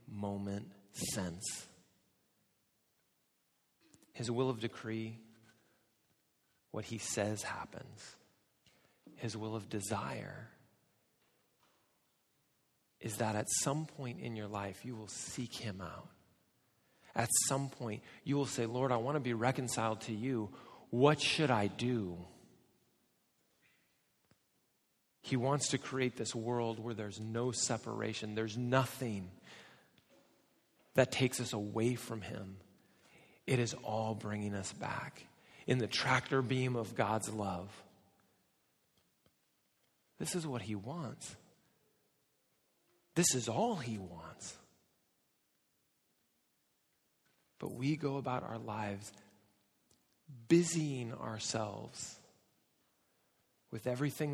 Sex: male